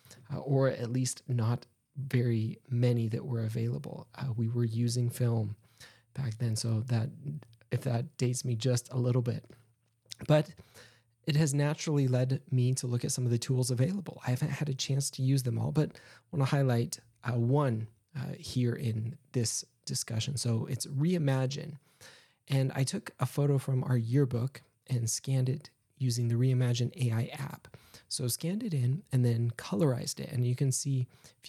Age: 20-39